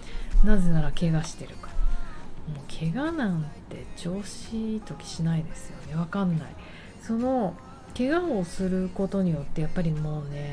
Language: Japanese